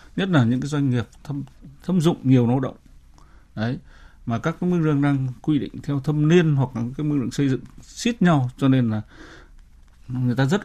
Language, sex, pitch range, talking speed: Vietnamese, male, 115-140 Hz, 220 wpm